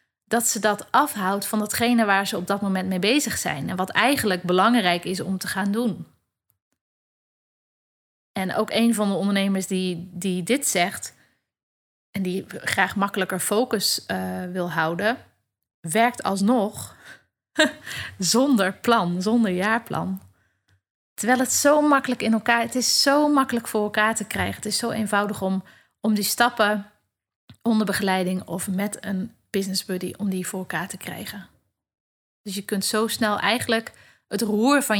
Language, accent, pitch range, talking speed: Dutch, Dutch, 185-230 Hz, 155 wpm